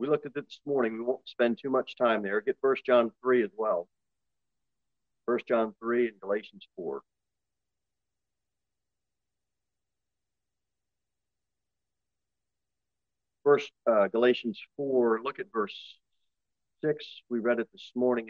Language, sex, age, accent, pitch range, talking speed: English, male, 50-69, American, 100-145 Hz, 125 wpm